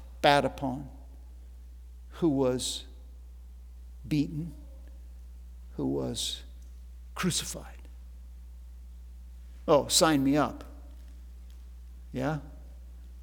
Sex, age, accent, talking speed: male, 50-69, American, 60 wpm